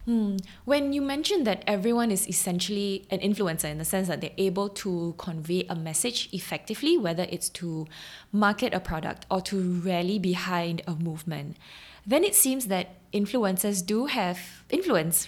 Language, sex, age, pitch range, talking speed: English, female, 20-39, 175-210 Hz, 160 wpm